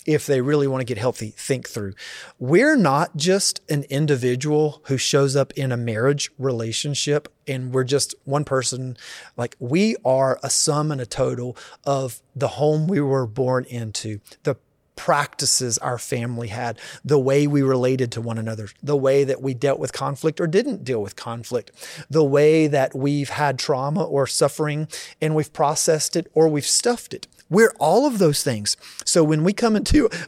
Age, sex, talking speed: 30-49, male, 180 wpm